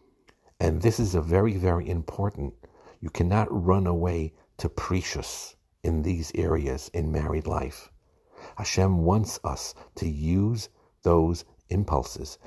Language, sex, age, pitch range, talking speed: English, male, 60-79, 80-90 Hz, 120 wpm